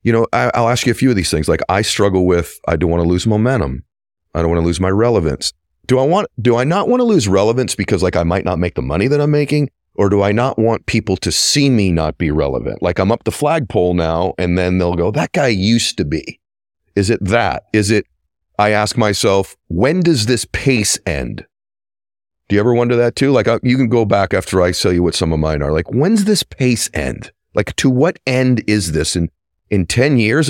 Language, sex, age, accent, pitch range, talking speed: English, male, 40-59, American, 85-120 Hz, 240 wpm